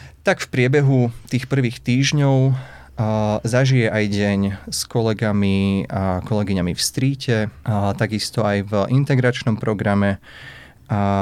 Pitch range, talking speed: 100-120 Hz, 120 wpm